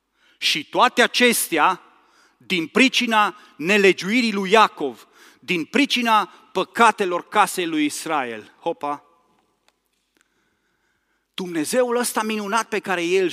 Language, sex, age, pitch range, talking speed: Romanian, male, 30-49, 170-250 Hz, 95 wpm